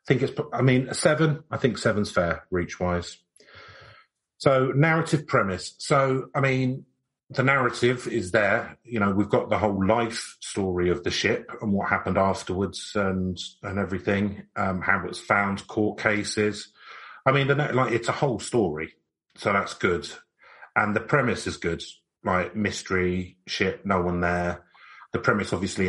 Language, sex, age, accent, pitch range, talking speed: English, male, 30-49, British, 90-115 Hz, 170 wpm